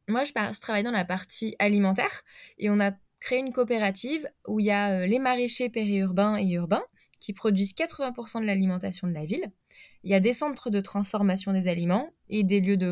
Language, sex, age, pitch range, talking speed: French, female, 20-39, 180-210 Hz, 200 wpm